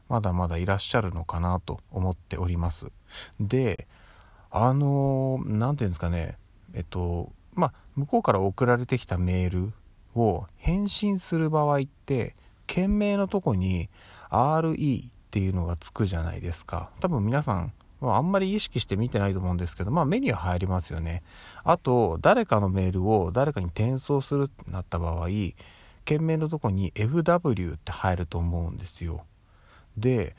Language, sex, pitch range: Japanese, male, 90-130 Hz